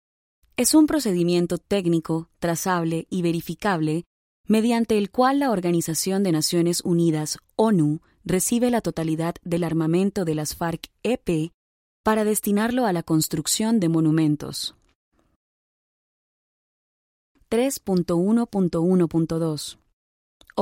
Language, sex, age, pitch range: Spanish, female, 20-39, 165-205 Hz